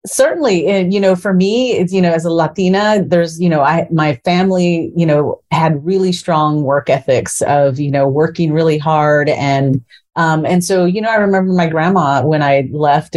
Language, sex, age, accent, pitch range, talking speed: English, female, 30-49, American, 145-180 Hz, 200 wpm